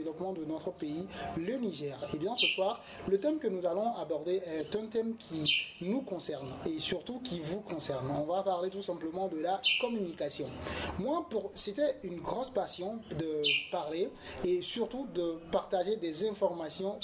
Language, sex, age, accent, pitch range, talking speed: French, male, 30-49, French, 170-215 Hz, 170 wpm